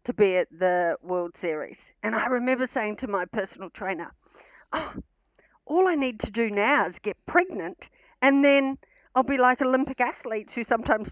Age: 50-69